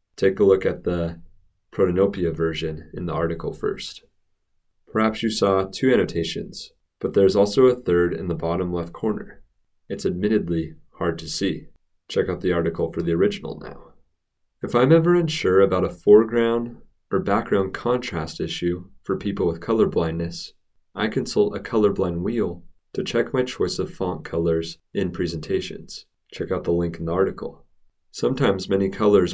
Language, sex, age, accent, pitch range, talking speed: English, male, 30-49, American, 85-100 Hz, 160 wpm